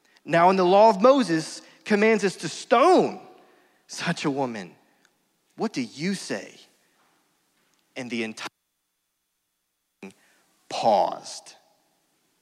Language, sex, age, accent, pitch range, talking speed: English, male, 30-49, American, 140-185 Hz, 105 wpm